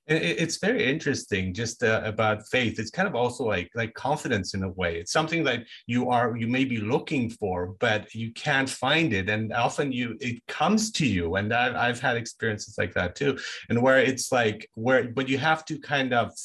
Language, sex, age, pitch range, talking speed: English, male, 30-49, 100-130 Hz, 210 wpm